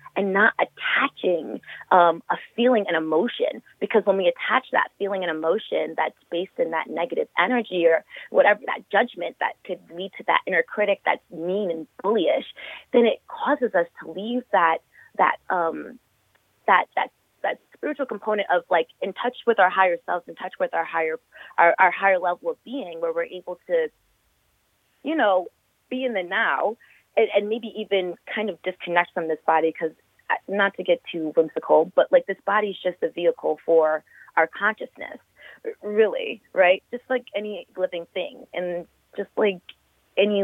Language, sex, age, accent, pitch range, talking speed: English, female, 20-39, American, 170-240 Hz, 175 wpm